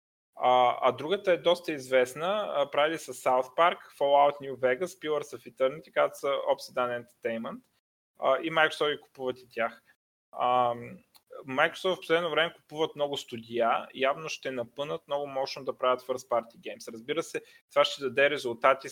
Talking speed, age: 155 wpm, 20-39